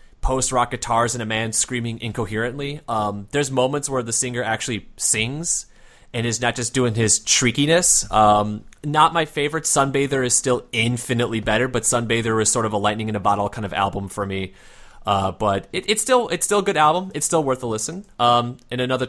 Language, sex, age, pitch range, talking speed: English, male, 30-49, 110-145 Hz, 190 wpm